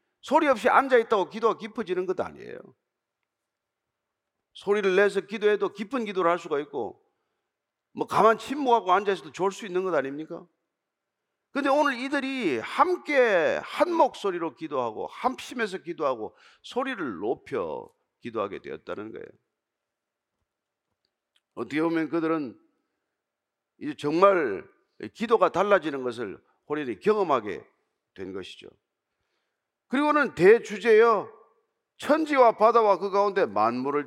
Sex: male